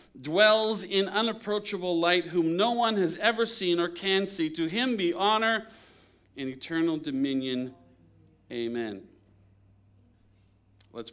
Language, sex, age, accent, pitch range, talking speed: English, male, 40-59, American, 135-180 Hz, 120 wpm